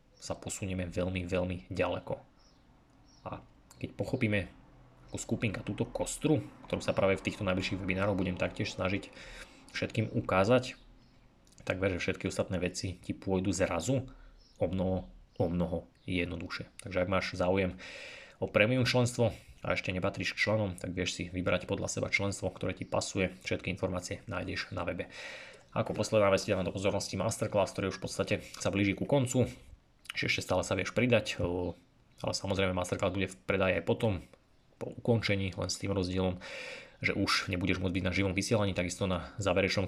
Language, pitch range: Slovak, 90-105 Hz